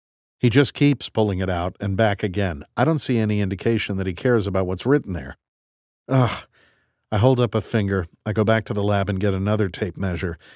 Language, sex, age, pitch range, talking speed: English, male, 50-69, 95-125 Hz, 215 wpm